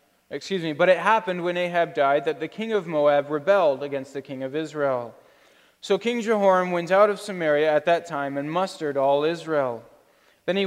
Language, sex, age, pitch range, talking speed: English, male, 20-39, 145-195 Hz, 195 wpm